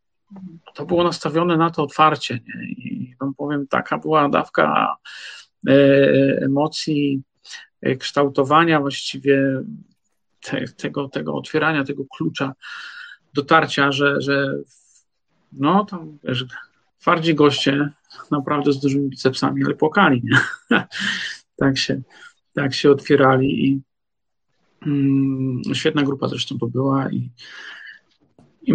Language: Polish